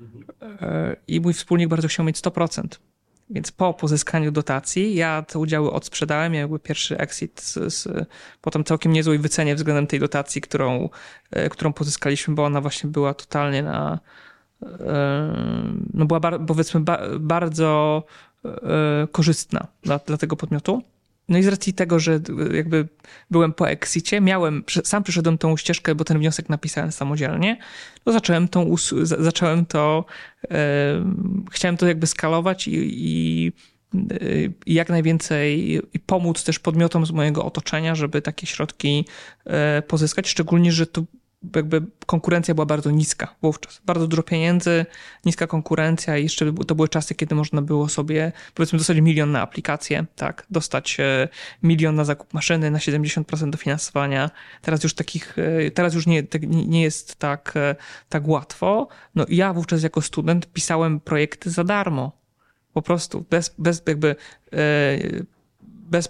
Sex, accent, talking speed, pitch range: male, native, 140 wpm, 150-170 Hz